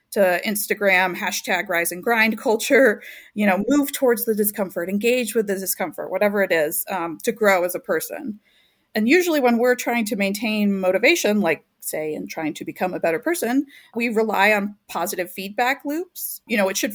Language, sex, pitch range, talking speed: English, female, 195-250 Hz, 190 wpm